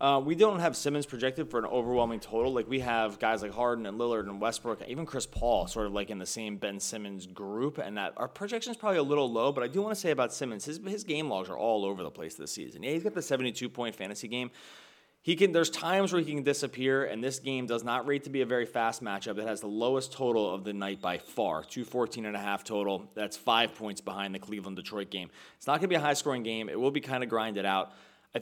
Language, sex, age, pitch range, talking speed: English, male, 30-49, 110-145 Hz, 260 wpm